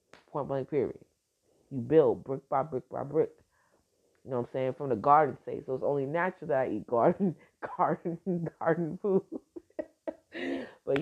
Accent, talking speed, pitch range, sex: American, 170 wpm, 130-180 Hz, female